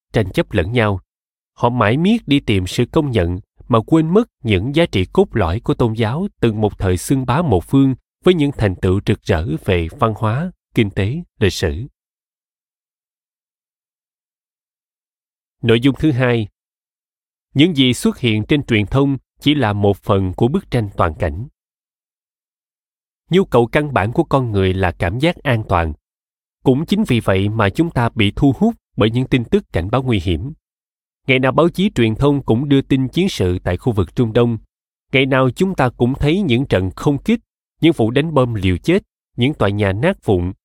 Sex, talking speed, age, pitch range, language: male, 190 wpm, 20-39, 105-145 Hz, Vietnamese